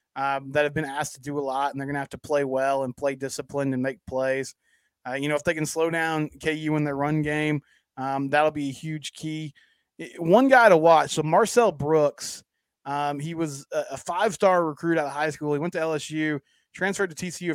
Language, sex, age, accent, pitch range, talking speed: English, male, 20-39, American, 145-165 Hz, 220 wpm